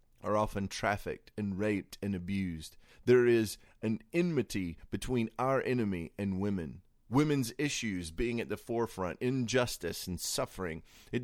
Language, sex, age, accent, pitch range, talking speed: English, male, 30-49, American, 95-120 Hz, 140 wpm